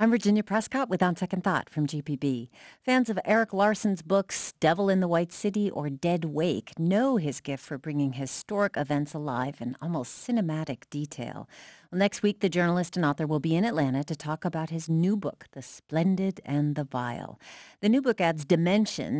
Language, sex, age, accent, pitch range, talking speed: English, female, 50-69, American, 145-200 Hz, 190 wpm